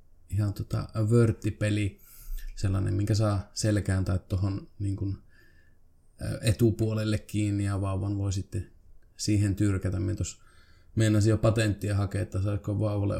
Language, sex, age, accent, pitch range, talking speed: Finnish, male, 20-39, native, 100-110 Hz, 120 wpm